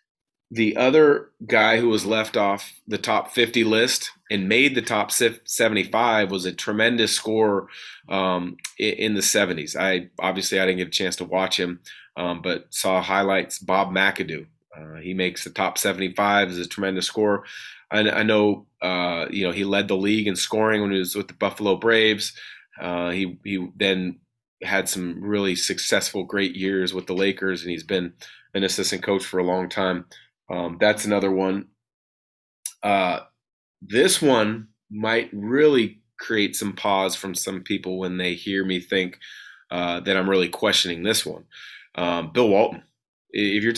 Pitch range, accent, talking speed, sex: 90-105 Hz, American, 170 wpm, male